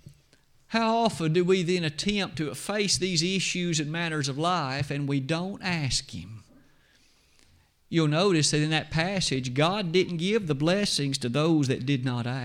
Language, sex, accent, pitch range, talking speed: English, male, American, 135-180 Hz, 170 wpm